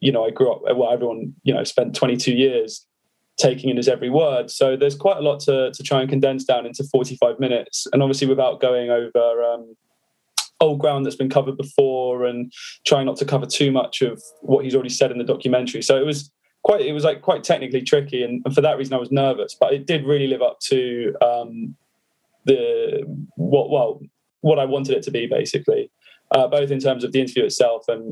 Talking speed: 220 wpm